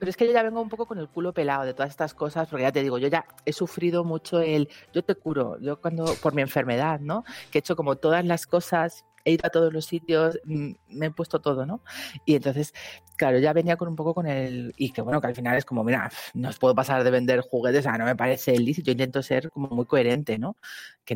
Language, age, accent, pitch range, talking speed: Spanish, 30-49, Spanish, 125-160 Hz, 260 wpm